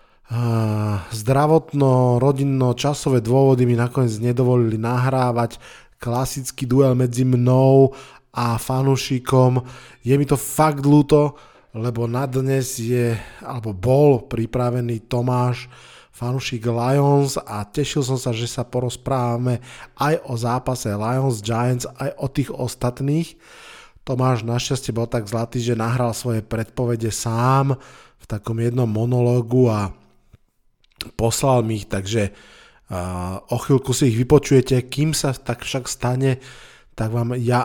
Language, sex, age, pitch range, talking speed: Slovak, male, 20-39, 120-135 Hz, 125 wpm